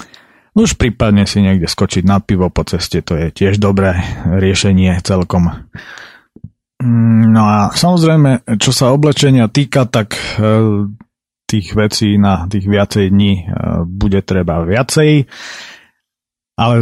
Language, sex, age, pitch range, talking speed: Slovak, male, 30-49, 95-110 Hz, 120 wpm